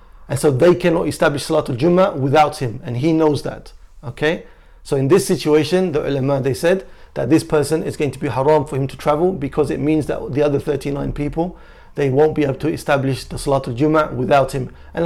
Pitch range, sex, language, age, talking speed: 125-150 Hz, male, English, 30-49, 215 wpm